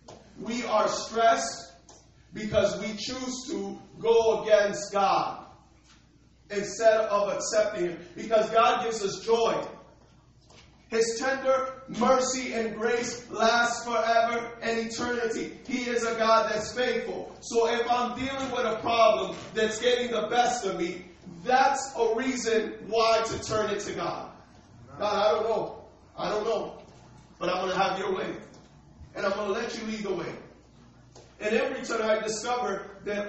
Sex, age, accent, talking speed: male, 40-59, American, 155 wpm